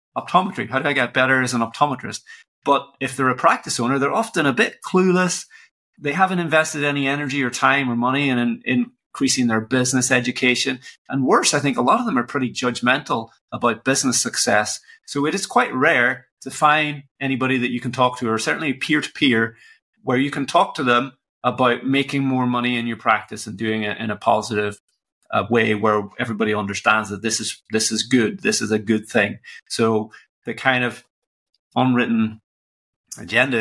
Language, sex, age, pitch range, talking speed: English, male, 30-49, 110-140 Hz, 190 wpm